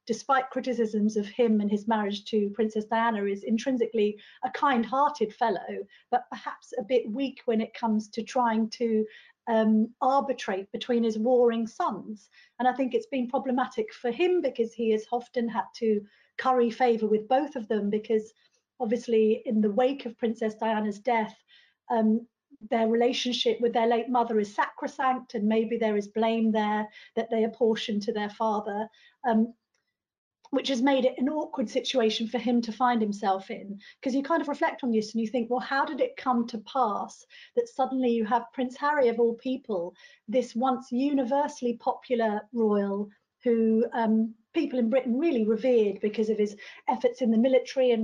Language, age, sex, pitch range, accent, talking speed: English, 40-59, female, 220-260 Hz, British, 175 wpm